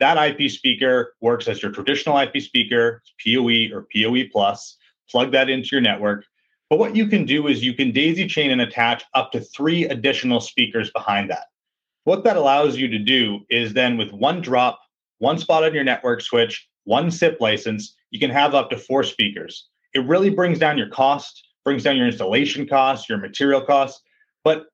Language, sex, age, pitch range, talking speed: English, male, 30-49, 115-155 Hz, 195 wpm